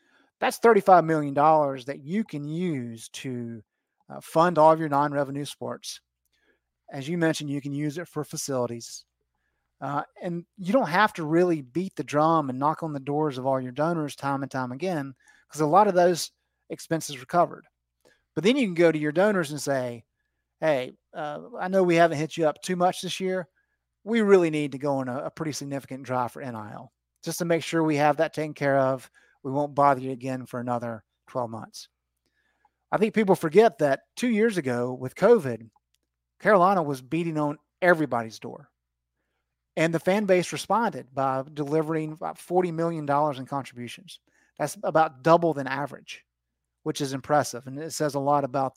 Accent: American